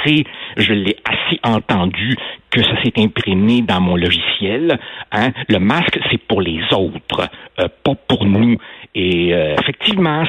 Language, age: French, 60-79